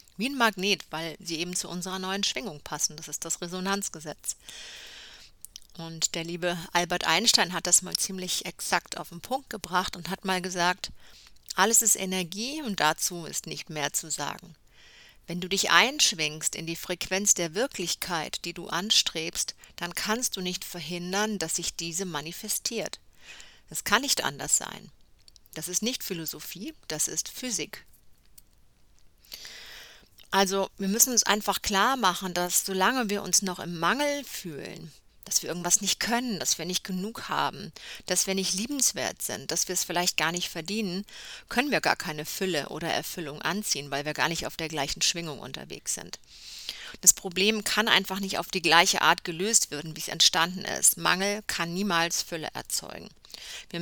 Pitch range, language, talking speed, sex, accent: 170-205 Hz, German, 170 wpm, female, German